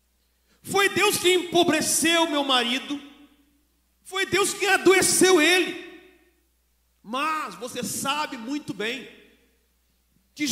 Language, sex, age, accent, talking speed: Portuguese, male, 50-69, Brazilian, 95 wpm